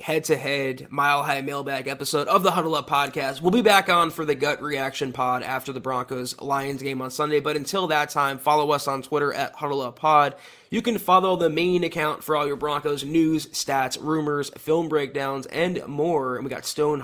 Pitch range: 140-165 Hz